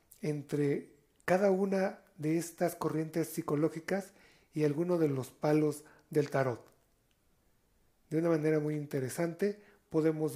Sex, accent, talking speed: male, Mexican, 115 wpm